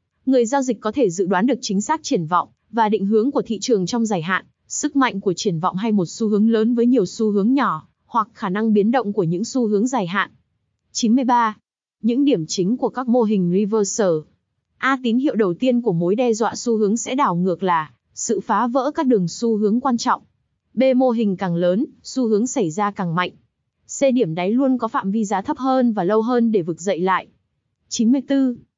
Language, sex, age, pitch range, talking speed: Vietnamese, female, 20-39, 195-250 Hz, 225 wpm